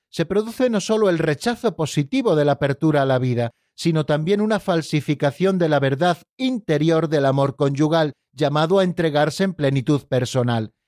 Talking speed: 165 wpm